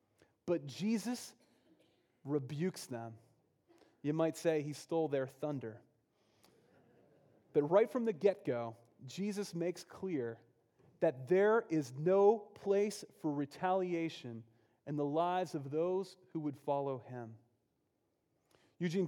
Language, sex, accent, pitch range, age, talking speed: English, male, American, 125-175 Hz, 30-49, 115 wpm